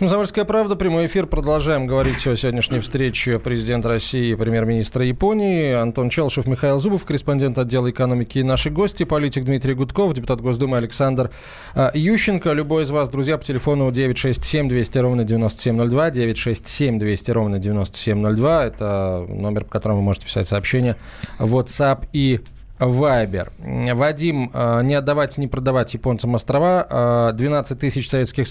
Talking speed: 140 wpm